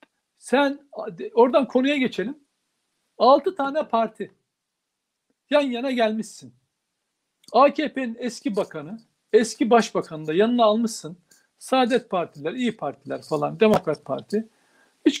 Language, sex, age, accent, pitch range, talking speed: Turkish, male, 60-79, native, 205-255 Hz, 105 wpm